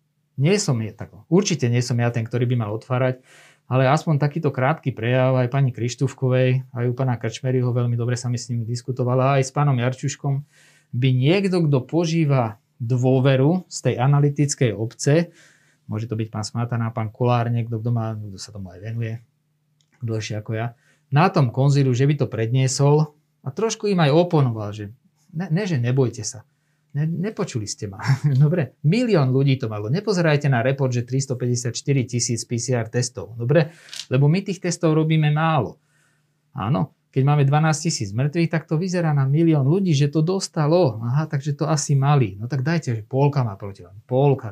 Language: Slovak